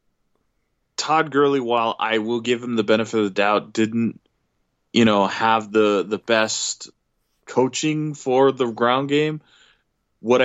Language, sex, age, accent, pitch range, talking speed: English, male, 20-39, American, 105-125 Hz, 145 wpm